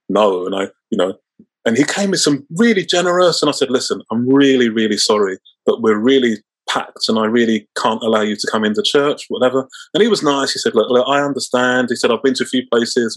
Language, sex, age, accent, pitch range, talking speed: English, male, 30-49, British, 130-210 Hz, 240 wpm